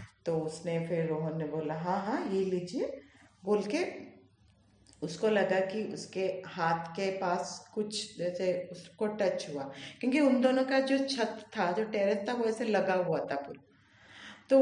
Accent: native